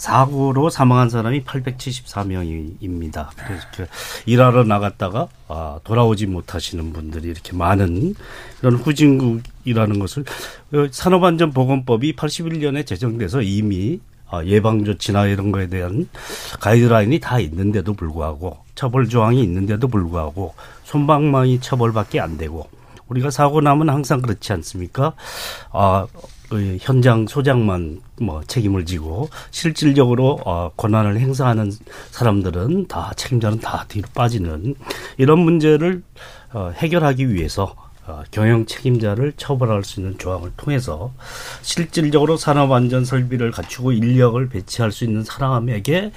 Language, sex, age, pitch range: Korean, male, 40-59, 100-135 Hz